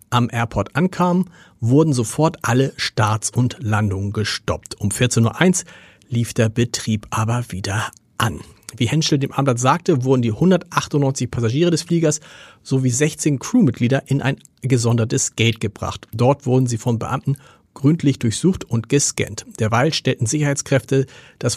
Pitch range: 115-145 Hz